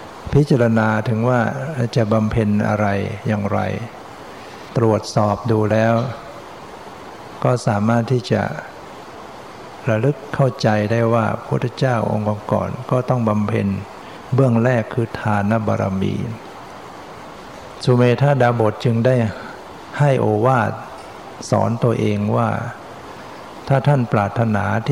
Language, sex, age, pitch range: Thai, male, 60-79, 105-120 Hz